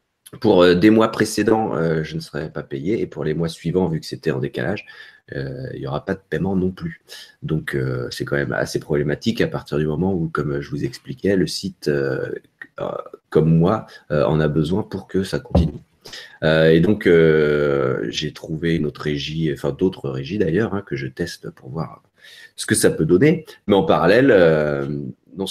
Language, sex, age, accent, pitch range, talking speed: French, male, 30-49, French, 80-105 Hz, 185 wpm